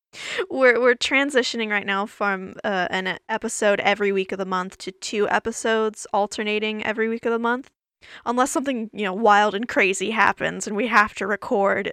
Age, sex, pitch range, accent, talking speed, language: 10-29, female, 200-270 Hz, American, 180 wpm, English